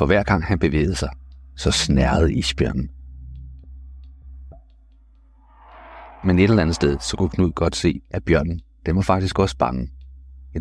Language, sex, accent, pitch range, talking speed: Danish, male, native, 65-85 Hz, 145 wpm